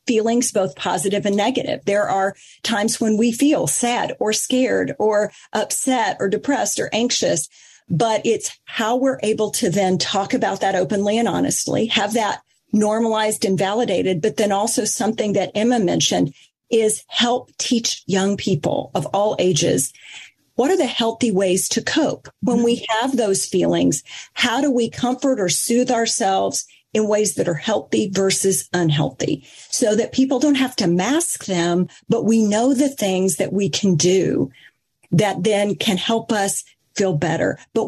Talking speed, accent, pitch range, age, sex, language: 165 wpm, American, 195-245 Hz, 40-59, female, English